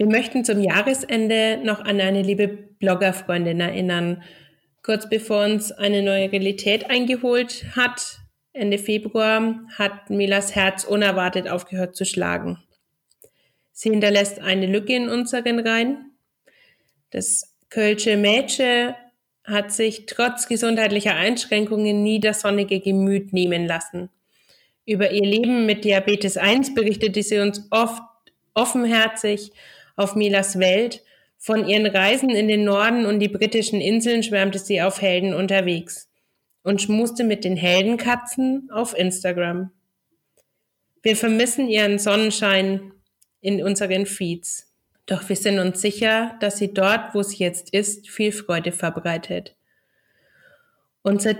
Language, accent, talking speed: German, German, 125 wpm